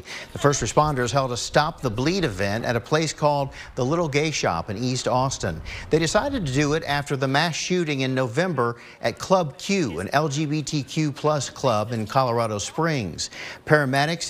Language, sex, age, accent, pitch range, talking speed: English, male, 50-69, American, 110-150 Hz, 170 wpm